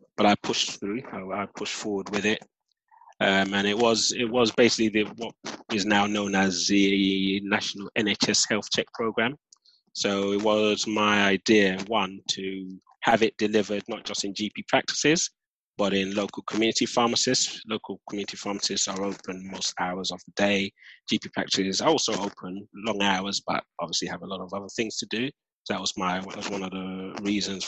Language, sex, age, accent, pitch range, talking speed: English, male, 20-39, British, 95-105 Hz, 185 wpm